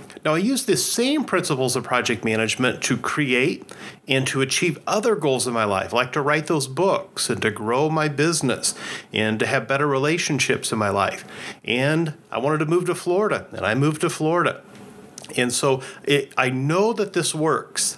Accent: American